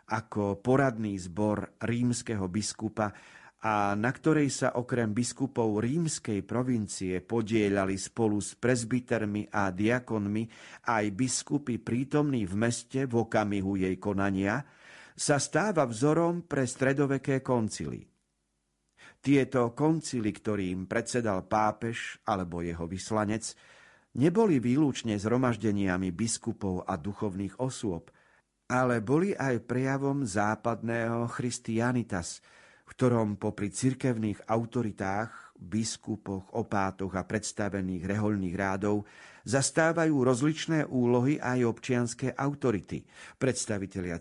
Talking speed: 100 wpm